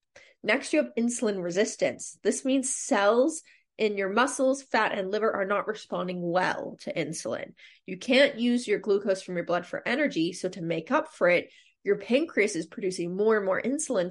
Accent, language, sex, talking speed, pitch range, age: American, English, female, 185 wpm, 190-270 Hz, 30-49